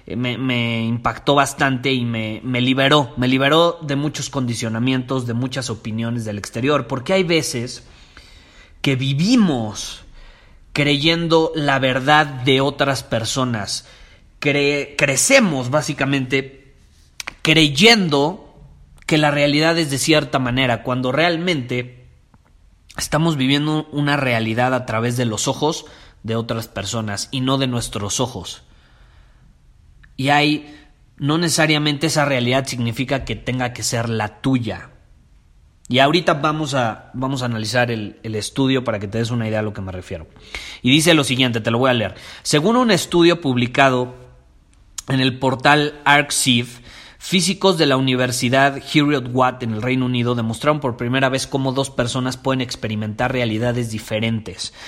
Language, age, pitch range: Spanish, 30-49, 115-145 Hz